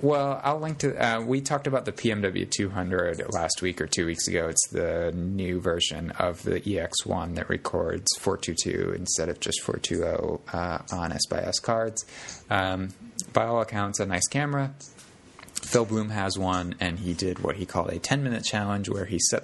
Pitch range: 90-115 Hz